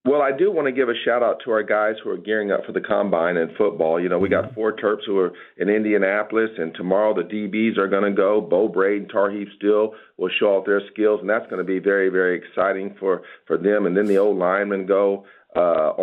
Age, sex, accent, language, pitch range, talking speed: 50-69, male, American, English, 95-105 Hz, 245 wpm